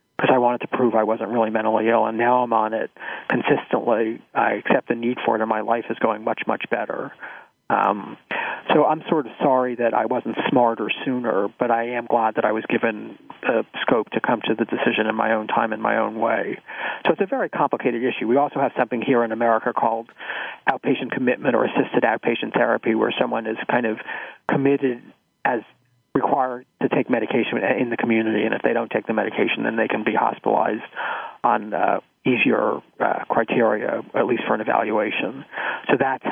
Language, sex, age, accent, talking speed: English, male, 40-59, American, 200 wpm